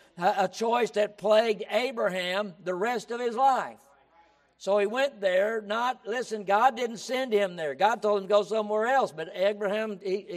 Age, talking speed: 60-79, 180 wpm